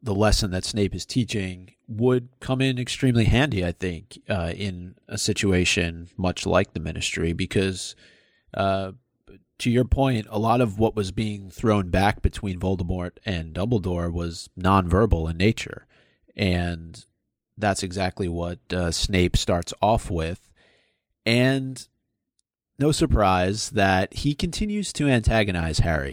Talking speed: 140 wpm